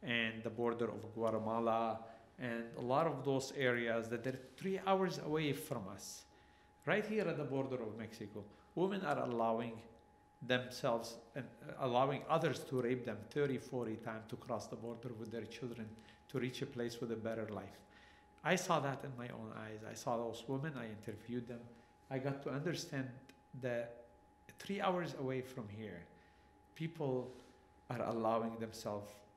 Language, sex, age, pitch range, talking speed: English, male, 50-69, 115-135 Hz, 165 wpm